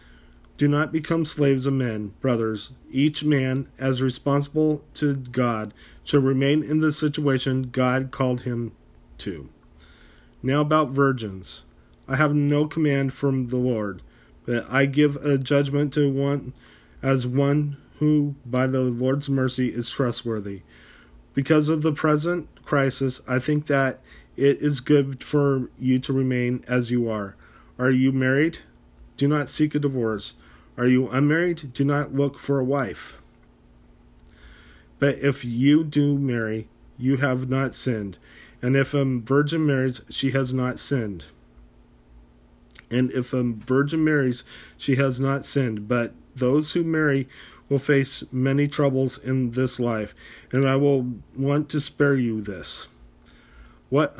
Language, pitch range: English, 110-140 Hz